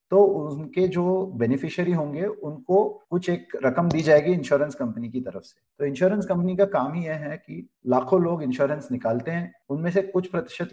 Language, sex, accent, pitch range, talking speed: Hindi, male, native, 130-180 Hz, 190 wpm